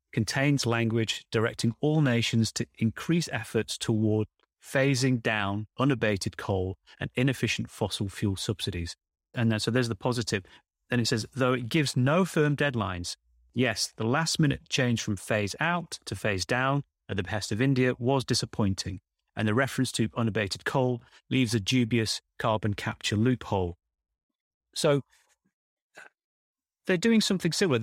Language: English